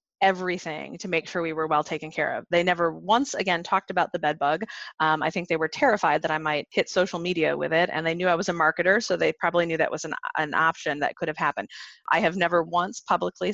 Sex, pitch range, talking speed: female, 160-190 Hz, 255 wpm